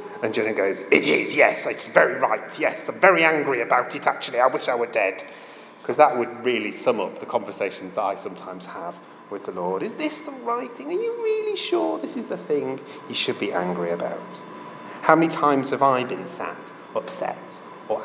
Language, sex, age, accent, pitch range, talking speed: English, male, 30-49, British, 125-170 Hz, 210 wpm